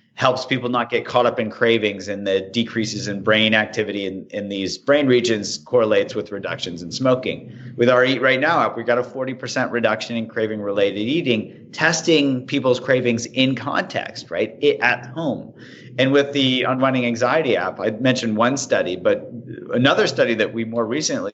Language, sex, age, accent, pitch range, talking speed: English, male, 40-59, American, 110-130 Hz, 180 wpm